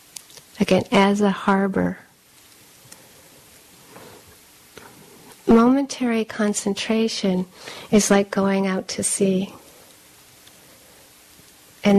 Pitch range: 185-205 Hz